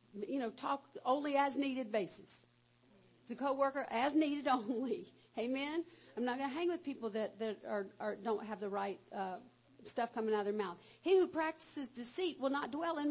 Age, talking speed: 50-69, 200 wpm